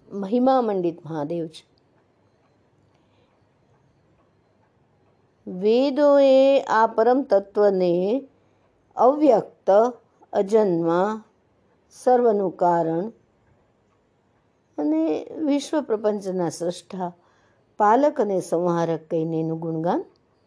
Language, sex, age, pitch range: Hindi, female, 60-79, 170-245 Hz